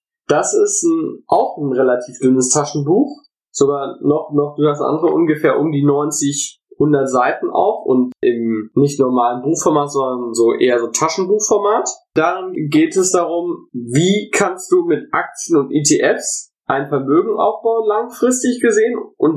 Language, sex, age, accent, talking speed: German, male, 20-39, German, 145 wpm